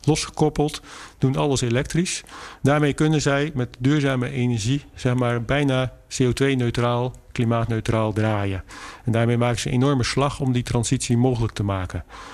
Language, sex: Dutch, male